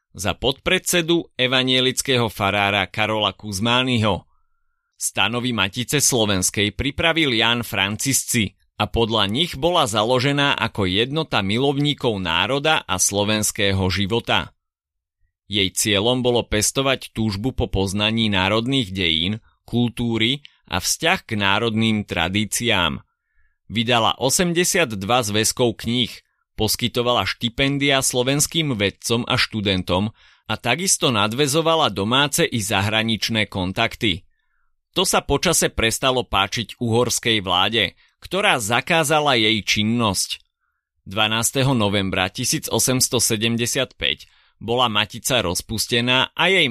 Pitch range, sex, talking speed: 105-130 Hz, male, 95 wpm